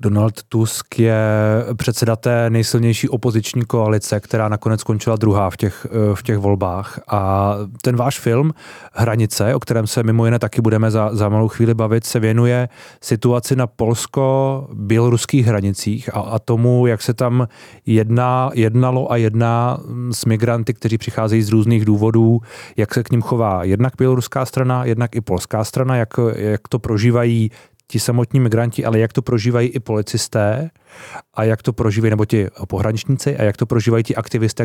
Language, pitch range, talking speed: Czech, 110-125 Hz, 165 wpm